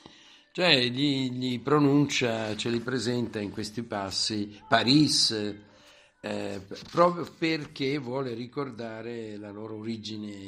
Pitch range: 105-125 Hz